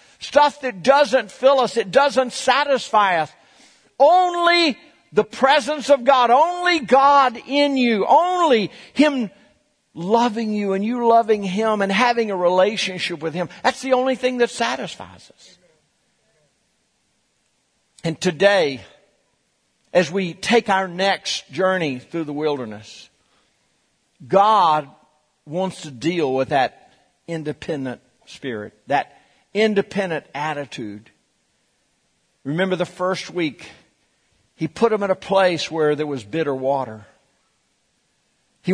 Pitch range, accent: 135-220 Hz, American